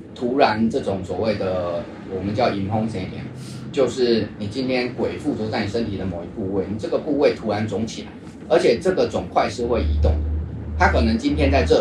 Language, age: Chinese, 30-49